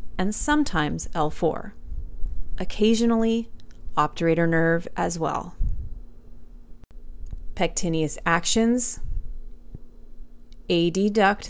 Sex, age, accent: female, 30-49, American